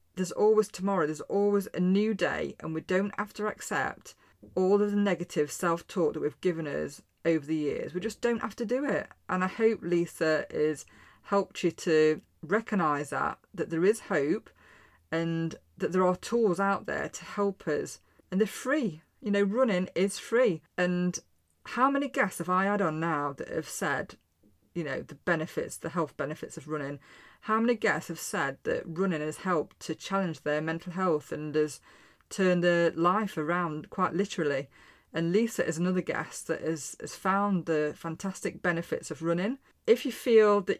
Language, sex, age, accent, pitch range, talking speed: English, female, 30-49, British, 160-200 Hz, 185 wpm